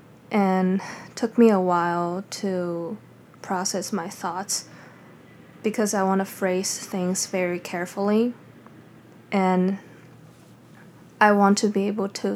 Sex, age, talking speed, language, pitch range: female, 20-39, 115 wpm, English, 195-210 Hz